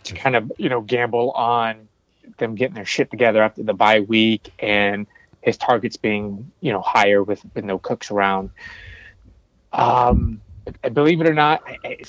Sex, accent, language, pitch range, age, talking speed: male, American, English, 105-125 Hz, 20-39, 170 wpm